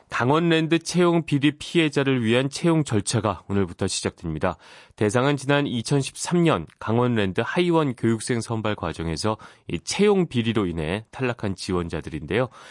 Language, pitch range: Korean, 100-140 Hz